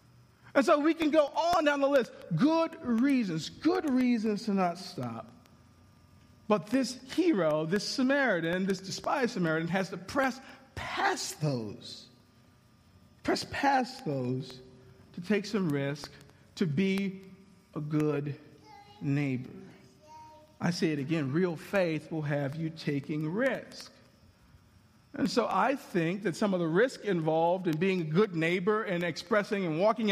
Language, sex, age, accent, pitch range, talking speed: English, male, 50-69, American, 155-245 Hz, 140 wpm